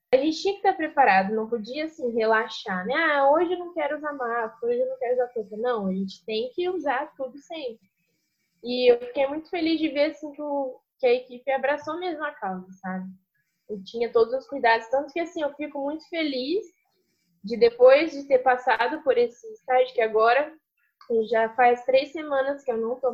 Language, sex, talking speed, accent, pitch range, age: Portuguese, female, 205 wpm, Brazilian, 220-305 Hz, 10-29